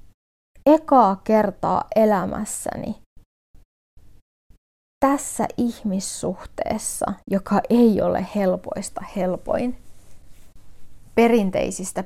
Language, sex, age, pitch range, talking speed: Finnish, female, 20-39, 165-230 Hz, 55 wpm